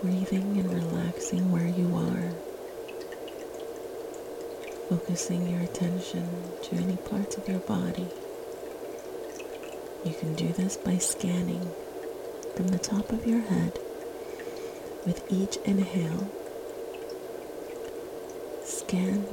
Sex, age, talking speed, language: female, 40-59, 95 wpm, English